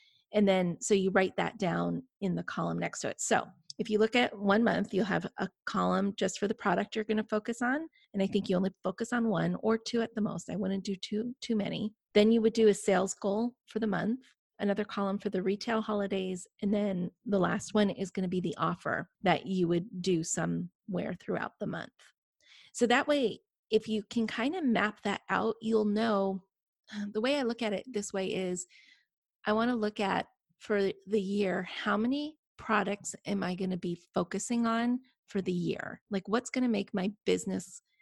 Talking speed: 215 wpm